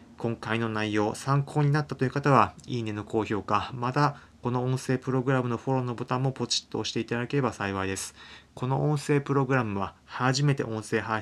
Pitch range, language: 105-130 Hz, Japanese